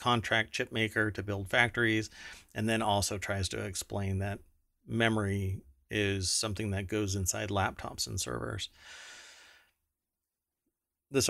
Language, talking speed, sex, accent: English, 120 wpm, male, American